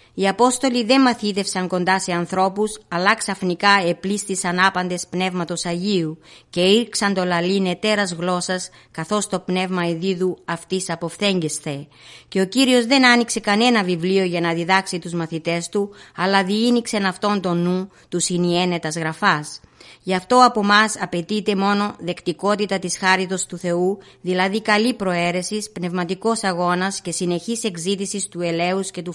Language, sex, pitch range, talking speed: Greek, female, 180-205 Hz, 140 wpm